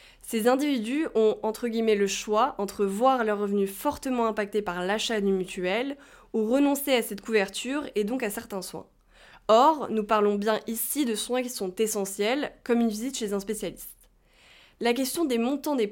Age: 20-39